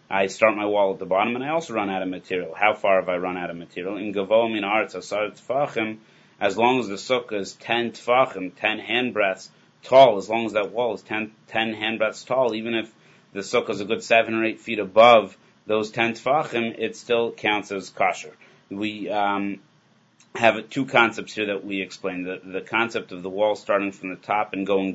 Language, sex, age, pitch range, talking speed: English, male, 30-49, 95-115 Hz, 220 wpm